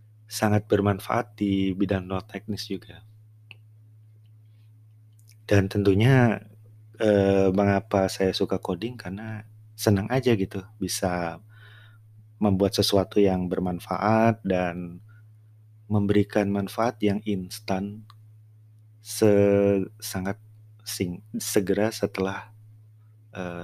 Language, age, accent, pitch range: Indonesian, 30-49, native, 95-110 Hz